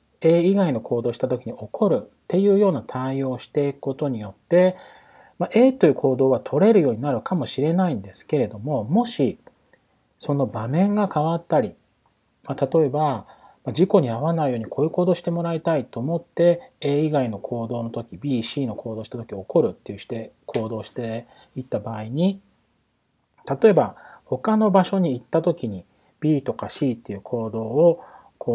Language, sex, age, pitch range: Japanese, male, 40-59, 120-175 Hz